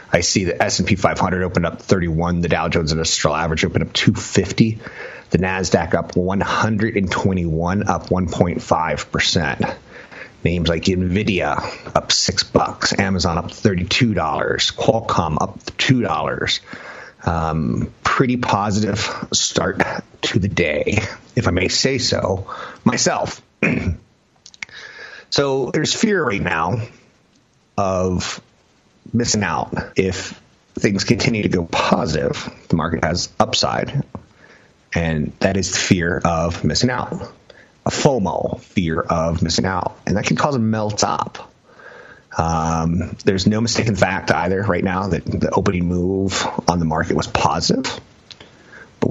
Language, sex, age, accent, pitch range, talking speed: English, male, 30-49, American, 85-105 Hz, 125 wpm